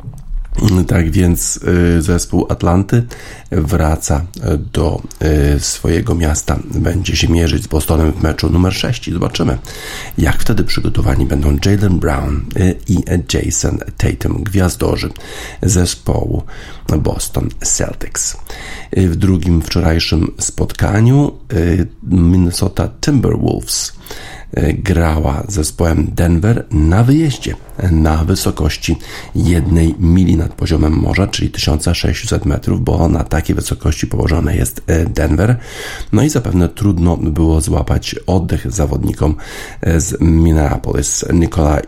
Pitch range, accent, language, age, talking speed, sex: 80-100 Hz, native, Polish, 50-69, 100 wpm, male